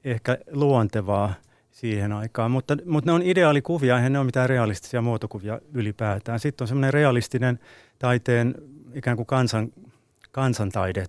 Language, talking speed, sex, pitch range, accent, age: Finnish, 135 wpm, male, 105-125 Hz, native, 30-49